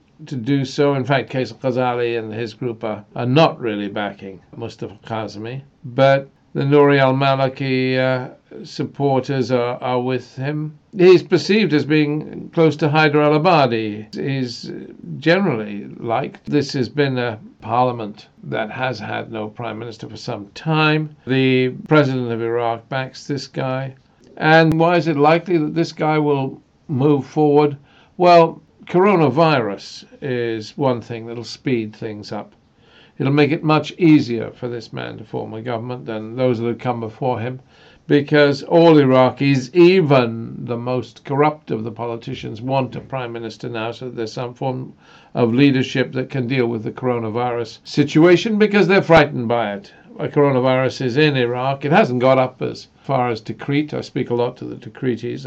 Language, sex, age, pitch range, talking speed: English, male, 50-69, 120-150 Hz, 160 wpm